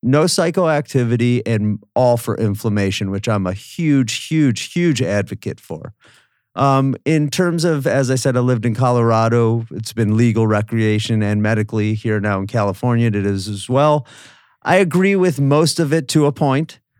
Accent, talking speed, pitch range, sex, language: American, 170 wpm, 105-130 Hz, male, English